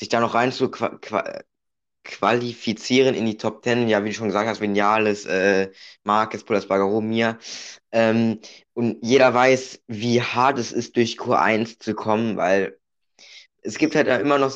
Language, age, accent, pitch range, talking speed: German, 20-39, German, 105-130 Hz, 165 wpm